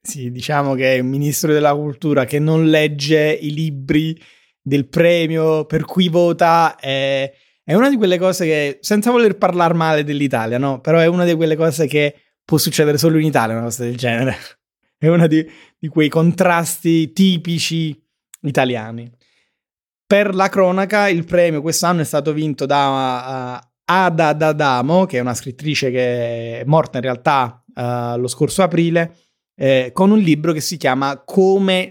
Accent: native